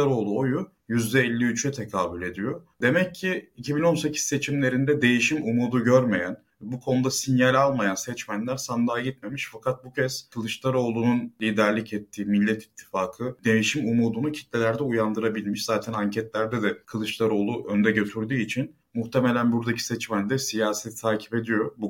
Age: 30-49